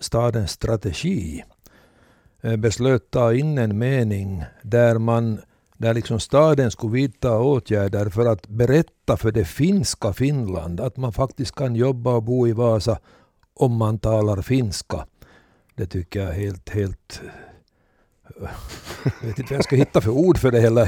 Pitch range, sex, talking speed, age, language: 115-135 Hz, male, 150 wpm, 60-79, Swedish